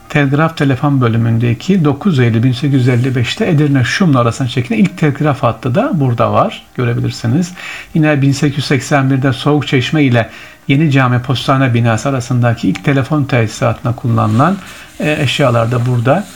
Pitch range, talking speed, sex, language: 115-145 Hz, 125 wpm, male, Turkish